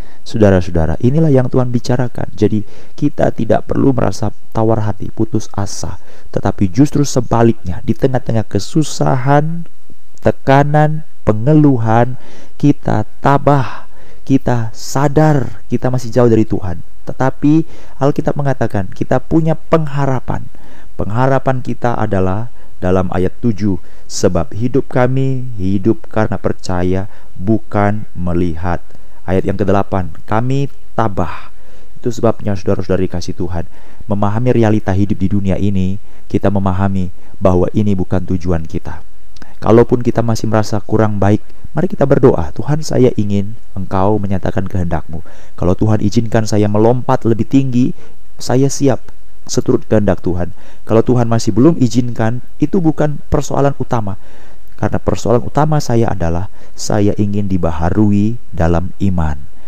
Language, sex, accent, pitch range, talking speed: Indonesian, male, native, 95-125 Hz, 120 wpm